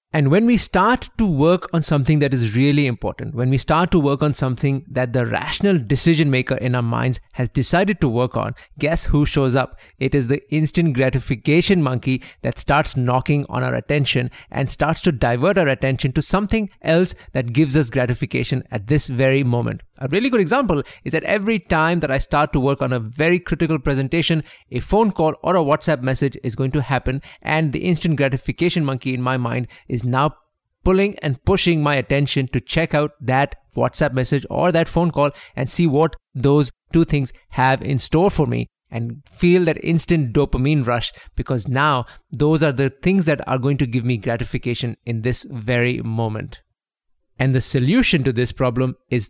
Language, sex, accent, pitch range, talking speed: English, male, Indian, 125-160 Hz, 195 wpm